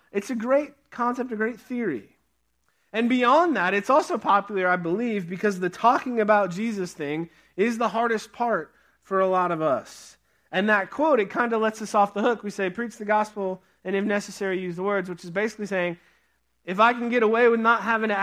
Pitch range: 180-225 Hz